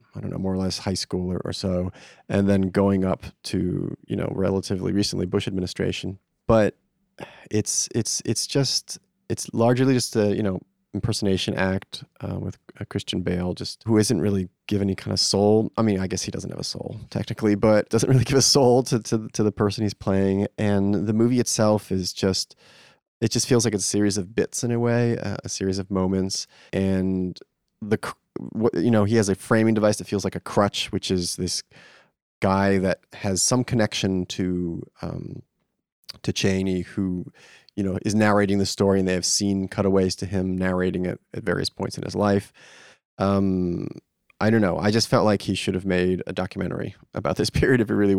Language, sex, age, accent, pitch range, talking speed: English, male, 30-49, American, 95-110 Hz, 200 wpm